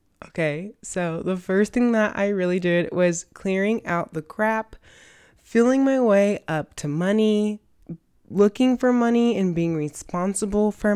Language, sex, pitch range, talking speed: English, female, 175-220 Hz, 150 wpm